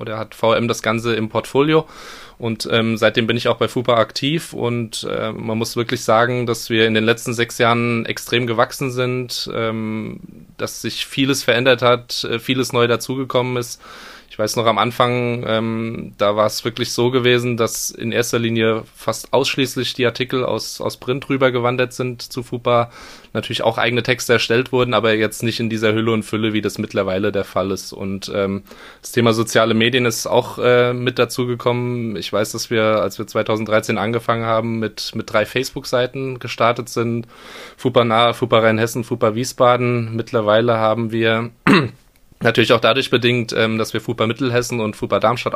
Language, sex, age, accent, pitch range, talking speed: German, male, 20-39, German, 110-125 Hz, 180 wpm